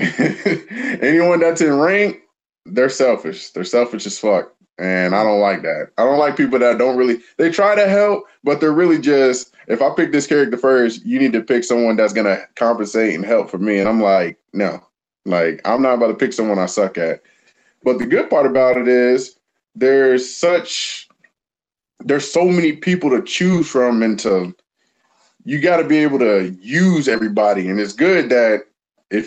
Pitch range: 105-165 Hz